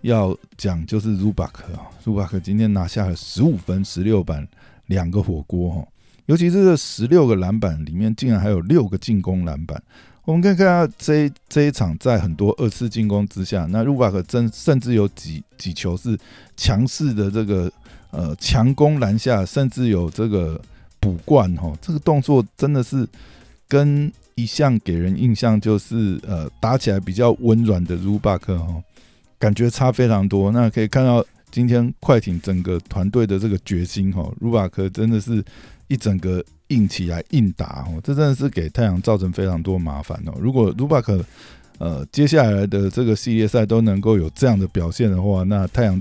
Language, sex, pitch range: Chinese, male, 90-120 Hz